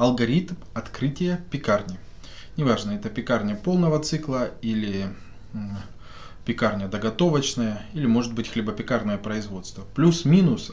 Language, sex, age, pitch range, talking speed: Russian, male, 20-39, 105-135 Hz, 95 wpm